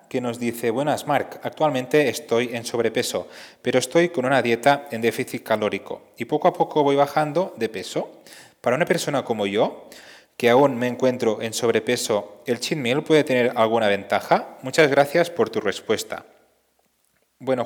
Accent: Spanish